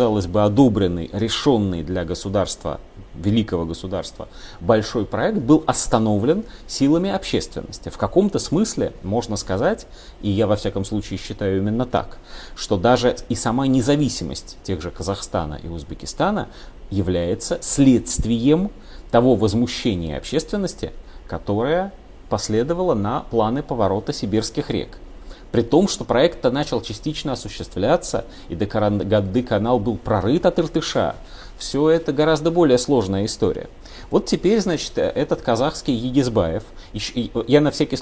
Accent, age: native, 30-49